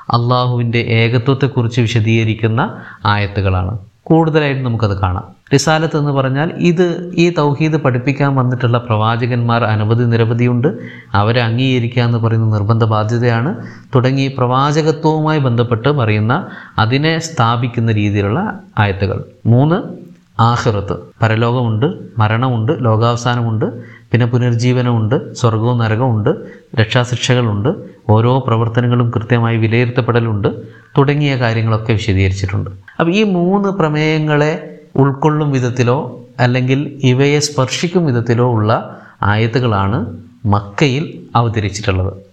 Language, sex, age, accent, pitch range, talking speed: Malayalam, male, 20-39, native, 115-140 Hz, 90 wpm